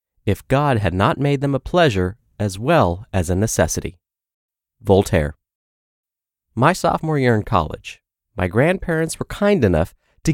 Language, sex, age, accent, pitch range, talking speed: English, male, 30-49, American, 95-140 Hz, 145 wpm